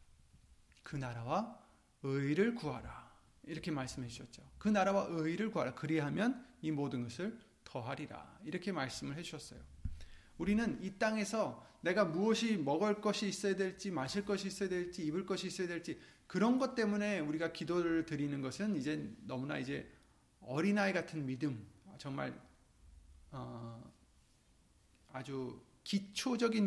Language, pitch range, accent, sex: Korean, 130-190 Hz, native, male